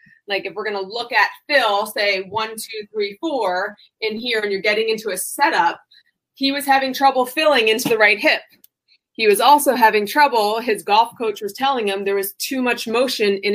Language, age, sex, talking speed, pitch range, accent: English, 20-39, female, 210 wpm, 200-245 Hz, American